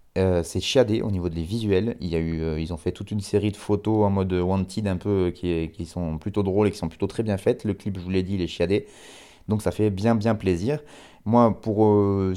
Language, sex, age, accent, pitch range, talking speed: French, male, 20-39, French, 90-110 Hz, 270 wpm